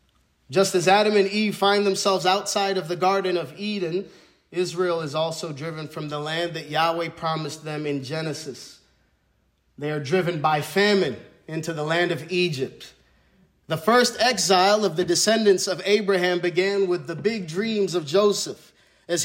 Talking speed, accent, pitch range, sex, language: 160 wpm, American, 150-185 Hz, male, English